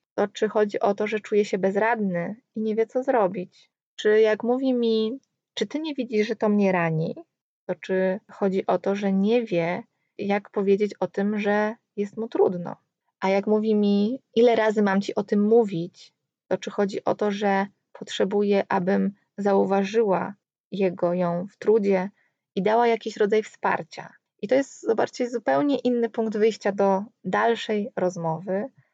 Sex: female